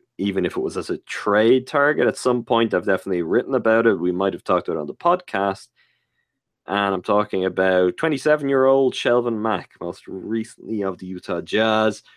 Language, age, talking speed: English, 20-39, 185 wpm